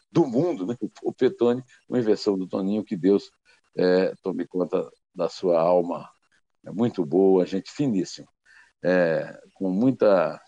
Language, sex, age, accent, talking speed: Portuguese, male, 60-79, Brazilian, 145 wpm